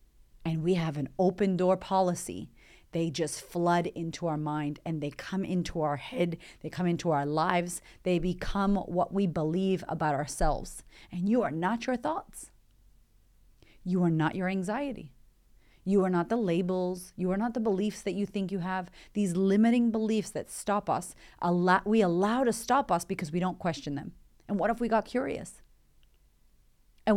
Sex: female